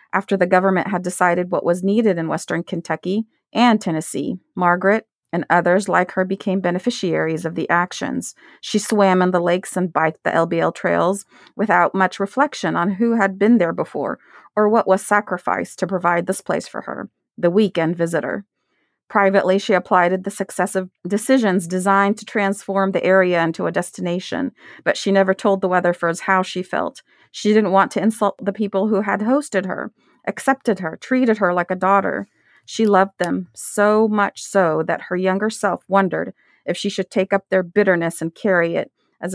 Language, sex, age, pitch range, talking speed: English, female, 30-49, 180-210 Hz, 180 wpm